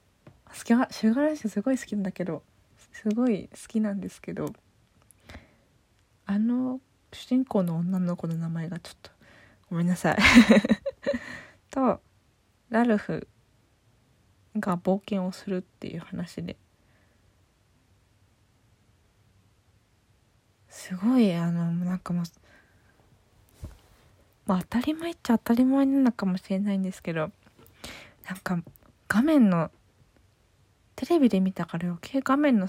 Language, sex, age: Japanese, female, 20-39